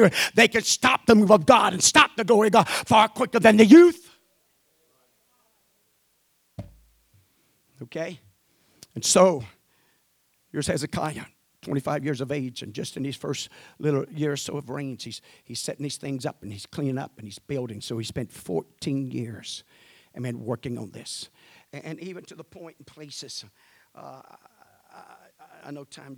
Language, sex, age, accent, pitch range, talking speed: English, male, 50-69, American, 130-180 Hz, 170 wpm